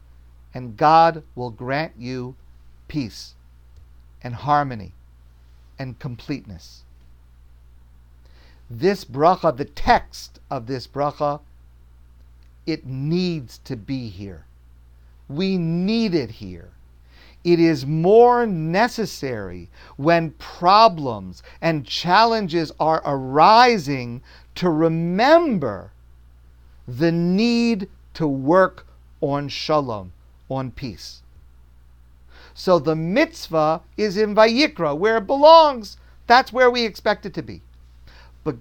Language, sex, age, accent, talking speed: English, male, 50-69, American, 100 wpm